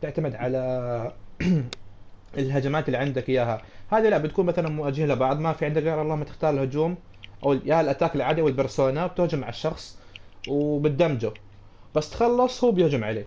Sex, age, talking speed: male, 30-49, 155 wpm